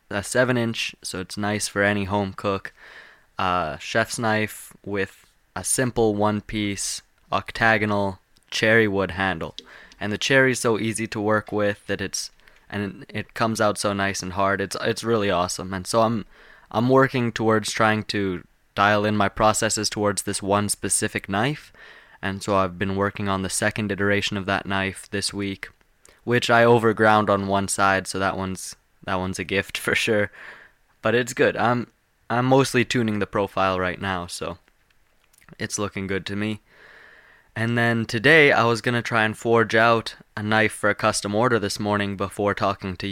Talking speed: 180 wpm